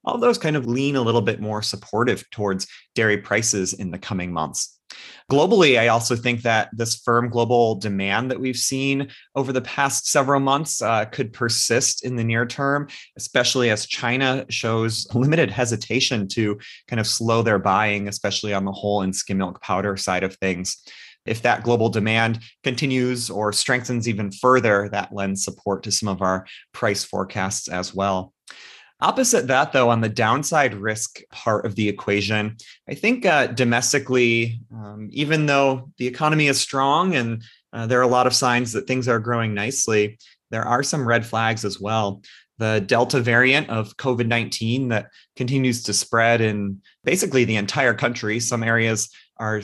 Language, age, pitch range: English, 30-49, 105-125 Hz